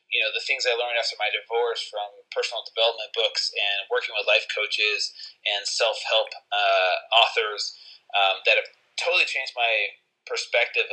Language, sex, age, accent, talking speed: English, male, 30-49, American, 165 wpm